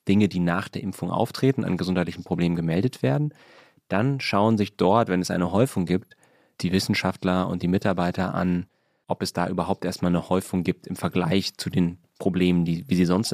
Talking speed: 190 wpm